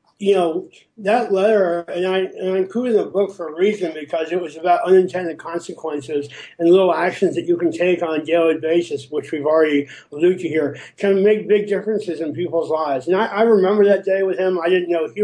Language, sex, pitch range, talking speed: English, male, 160-190 Hz, 215 wpm